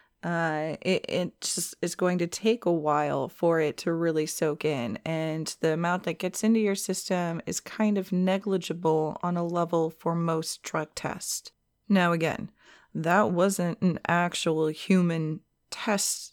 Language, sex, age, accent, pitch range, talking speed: English, female, 30-49, American, 170-215 Hz, 155 wpm